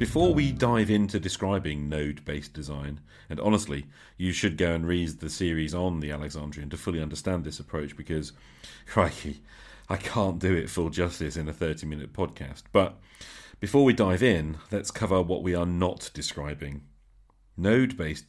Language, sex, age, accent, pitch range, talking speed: English, male, 40-59, British, 75-100 Hz, 160 wpm